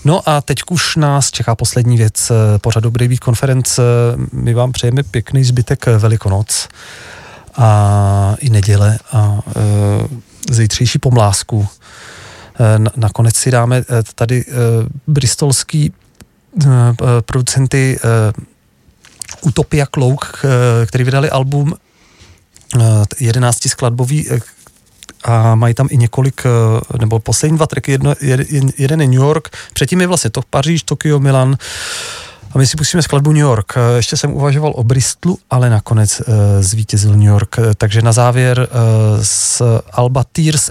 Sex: male